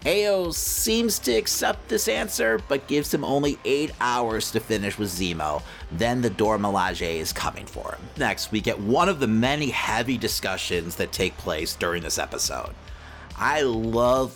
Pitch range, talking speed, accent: 95-125 Hz, 165 wpm, American